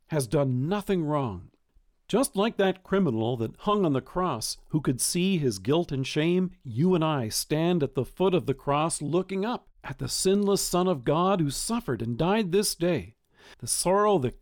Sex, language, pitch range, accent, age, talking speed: male, English, 135-190 Hz, American, 50-69, 195 wpm